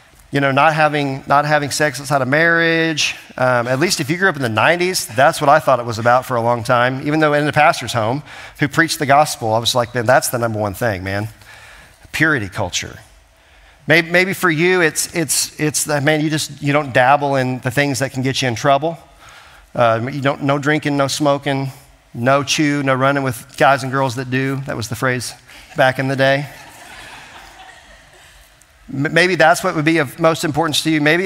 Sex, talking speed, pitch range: male, 215 wpm, 125-155 Hz